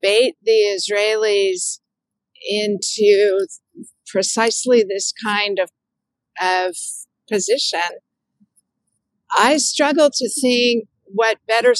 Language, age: English, 50-69